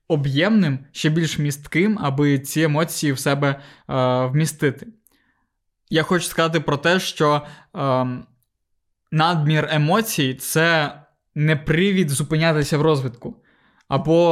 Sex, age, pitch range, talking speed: male, 20-39, 140-165 Hz, 115 wpm